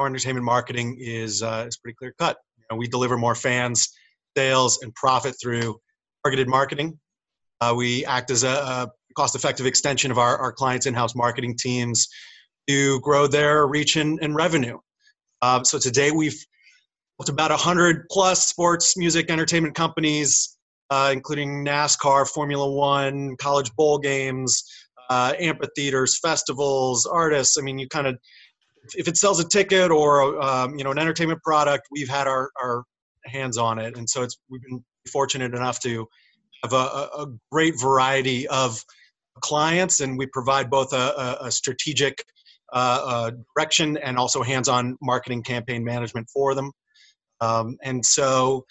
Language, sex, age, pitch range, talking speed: English, male, 30-49, 125-150 Hz, 155 wpm